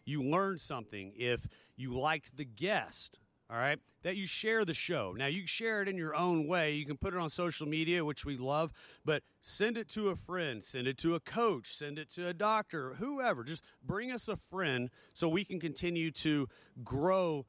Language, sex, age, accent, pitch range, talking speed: English, male, 30-49, American, 135-180 Hz, 210 wpm